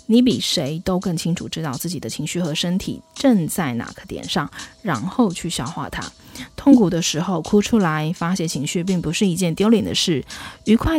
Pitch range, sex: 160-190 Hz, female